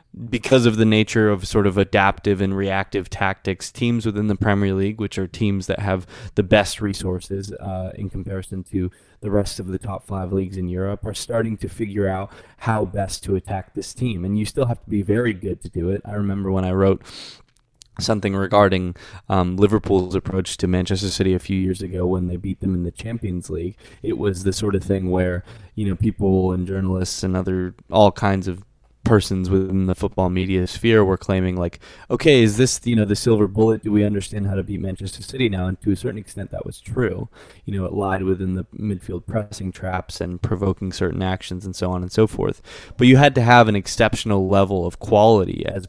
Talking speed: 215 wpm